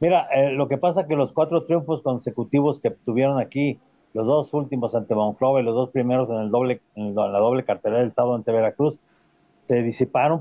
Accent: Mexican